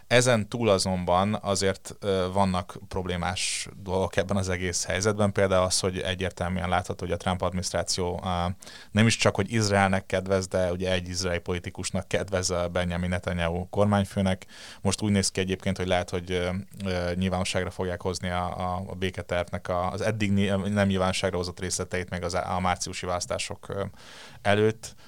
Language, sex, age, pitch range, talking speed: Hungarian, male, 20-39, 90-100 Hz, 145 wpm